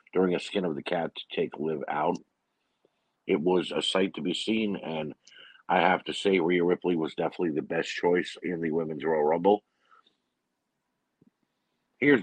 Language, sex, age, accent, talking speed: English, male, 50-69, American, 170 wpm